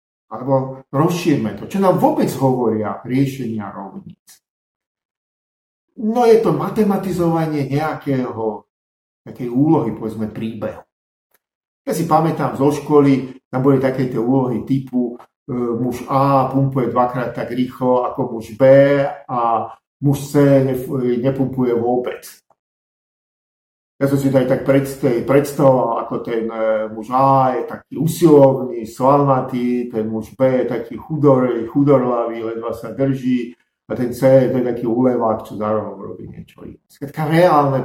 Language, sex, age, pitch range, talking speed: Slovak, male, 50-69, 120-145 Hz, 125 wpm